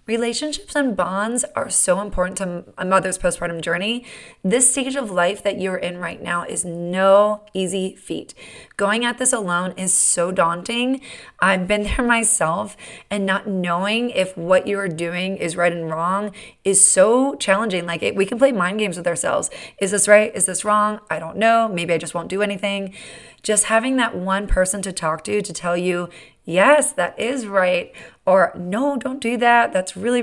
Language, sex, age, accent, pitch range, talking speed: English, female, 20-39, American, 180-220 Hz, 185 wpm